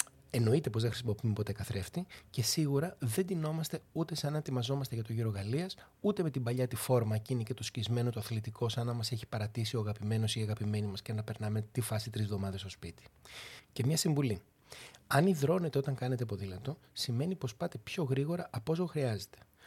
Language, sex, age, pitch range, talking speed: Greek, male, 30-49, 105-145 Hz, 200 wpm